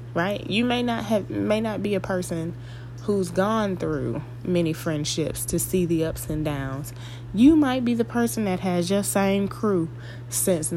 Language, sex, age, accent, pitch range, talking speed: English, female, 20-39, American, 120-190 Hz, 180 wpm